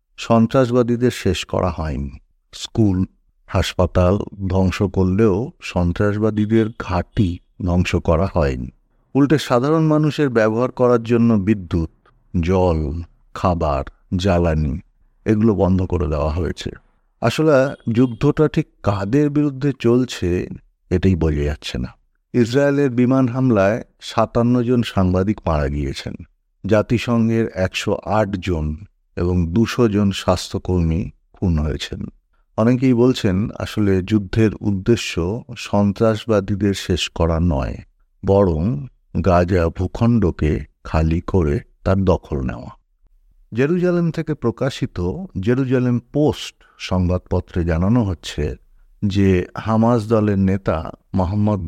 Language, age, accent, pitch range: Bengali, 50-69, native, 90-120 Hz